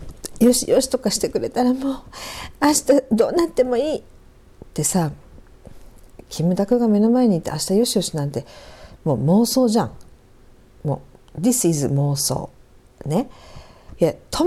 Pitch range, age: 170-255 Hz, 50-69